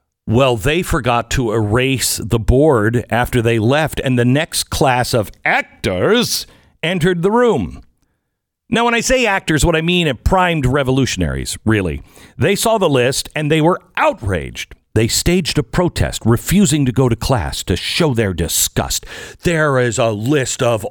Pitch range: 115-165 Hz